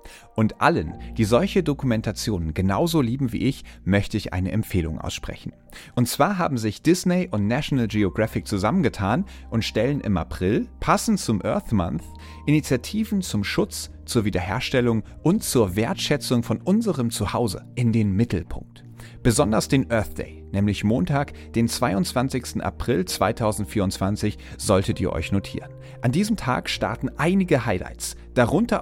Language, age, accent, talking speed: German, 40-59, German, 135 wpm